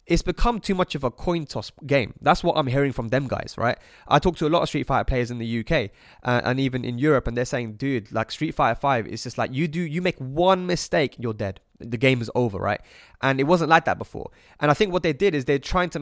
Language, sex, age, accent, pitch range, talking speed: English, male, 20-39, British, 120-170 Hz, 275 wpm